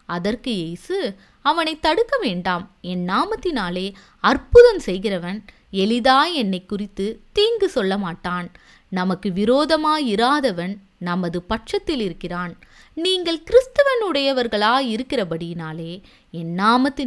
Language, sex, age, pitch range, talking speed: Tamil, female, 20-39, 175-270 Hz, 65 wpm